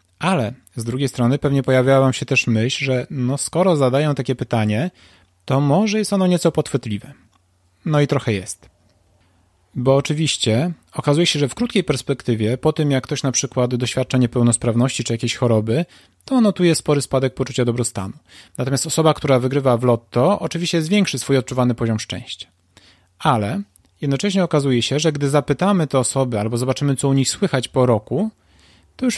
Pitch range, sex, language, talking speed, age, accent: 115-155 Hz, male, Polish, 170 wpm, 30-49, native